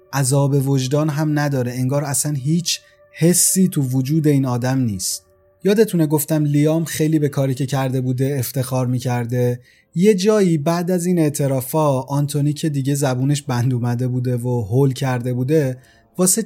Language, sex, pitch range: Persian, male, 125-160 Hz